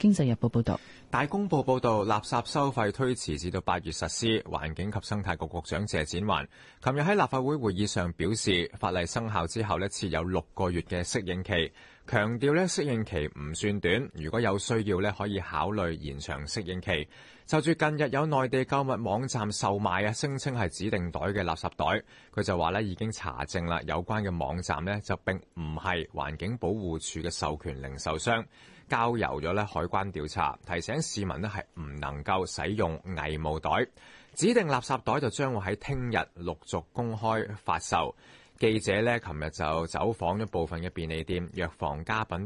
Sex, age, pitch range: male, 30-49, 85-110 Hz